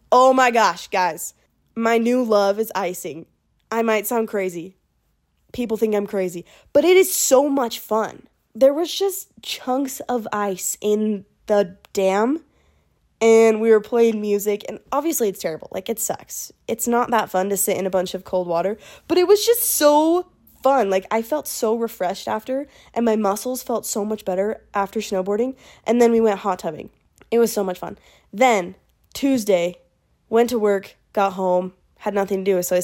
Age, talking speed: 20-39, 185 wpm